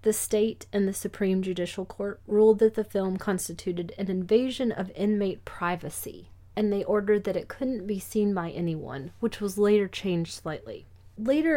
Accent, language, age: American, English, 30-49